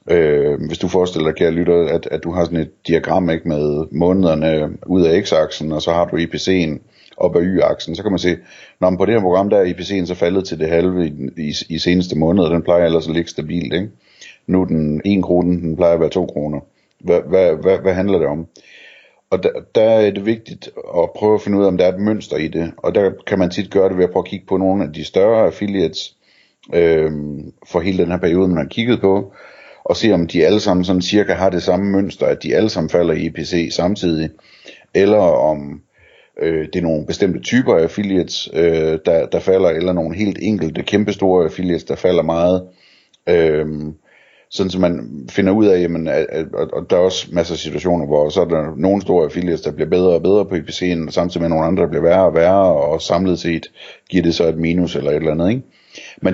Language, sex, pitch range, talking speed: Danish, male, 80-95 Hz, 230 wpm